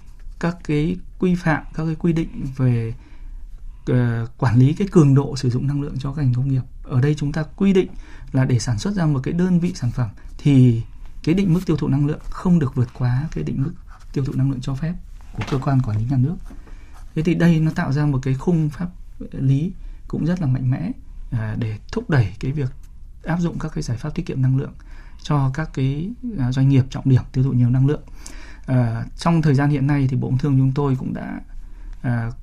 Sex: male